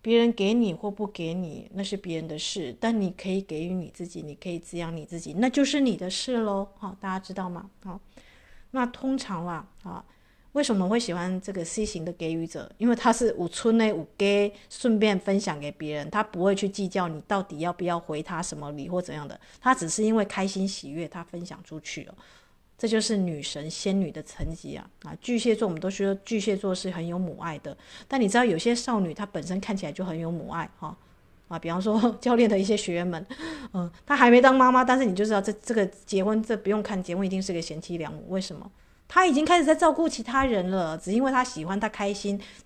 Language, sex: Chinese, female